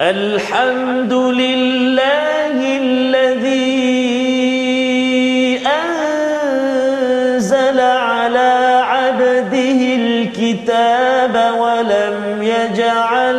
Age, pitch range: 40-59, 235-265 Hz